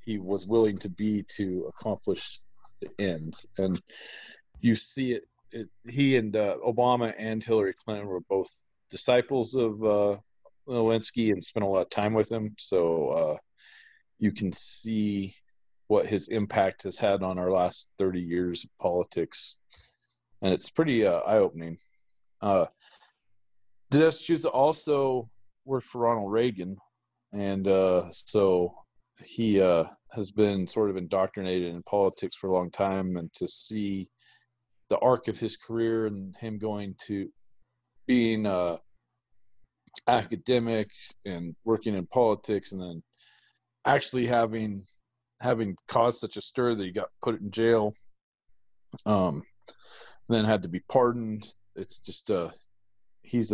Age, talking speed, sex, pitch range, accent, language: 40-59, 140 wpm, male, 95-115 Hz, American, English